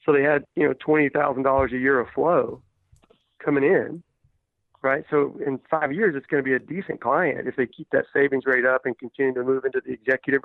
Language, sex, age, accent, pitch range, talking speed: English, male, 40-59, American, 120-140 Hz, 225 wpm